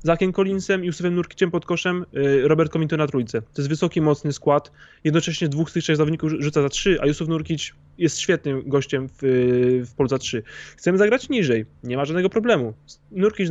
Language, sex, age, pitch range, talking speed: Polish, male, 20-39, 145-170 Hz, 190 wpm